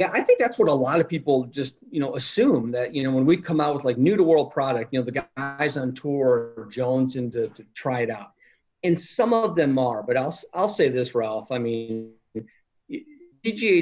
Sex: male